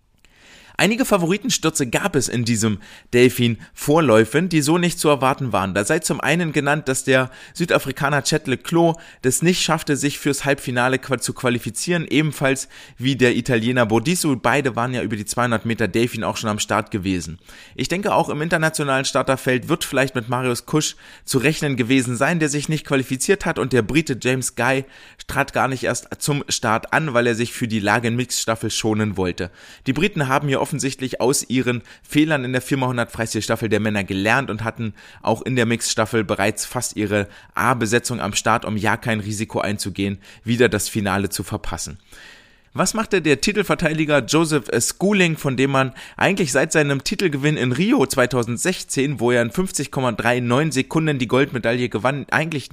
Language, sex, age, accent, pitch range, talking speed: German, male, 30-49, German, 115-150 Hz, 180 wpm